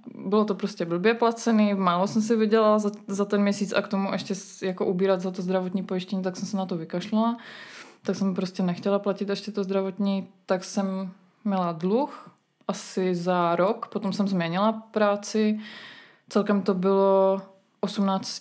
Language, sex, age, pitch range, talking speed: Czech, female, 20-39, 185-210 Hz, 170 wpm